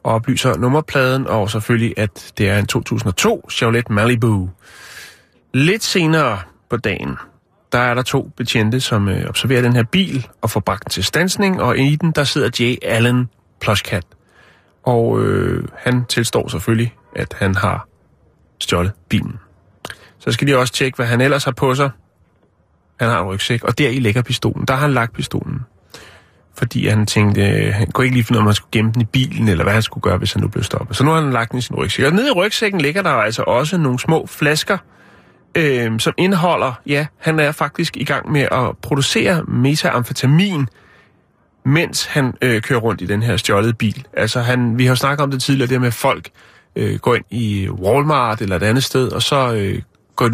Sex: male